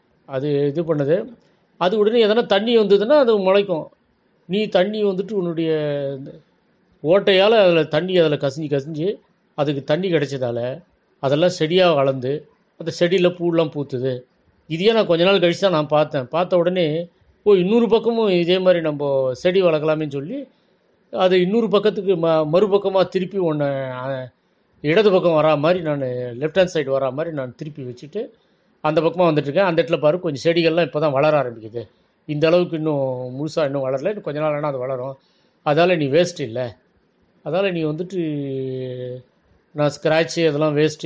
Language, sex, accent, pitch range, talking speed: Tamil, male, native, 140-185 Hz, 150 wpm